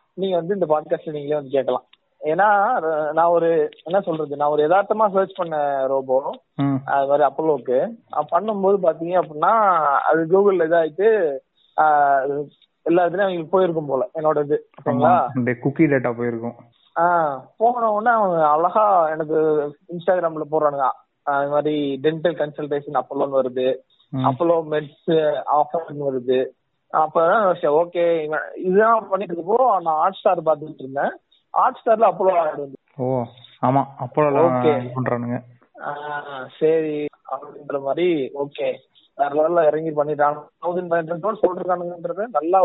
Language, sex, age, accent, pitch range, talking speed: Tamil, male, 20-39, native, 135-170 Hz, 65 wpm